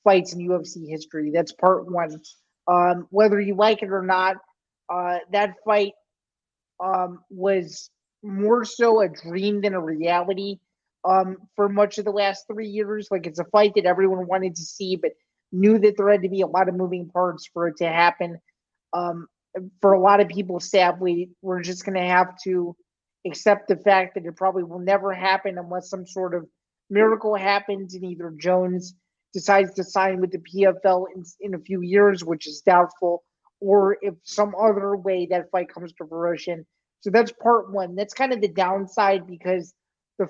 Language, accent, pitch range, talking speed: English, American, 180-200 Hz, 185 wpm